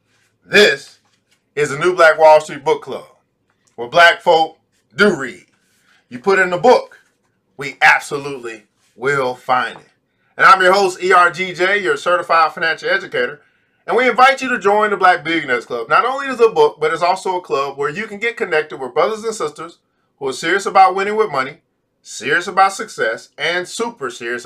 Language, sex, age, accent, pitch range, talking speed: English, male, 40-59, American, 165-220 Hz, 185 wpm